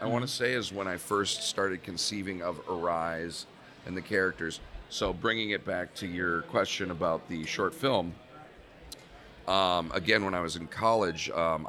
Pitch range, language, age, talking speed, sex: 85-100 Hz, English, 40-59, 175 wpm, male